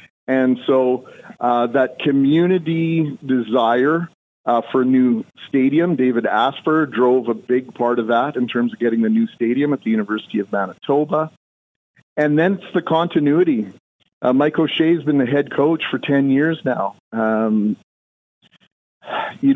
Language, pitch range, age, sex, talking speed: English, 125-150 Hz, 40-59, male, 155 wpm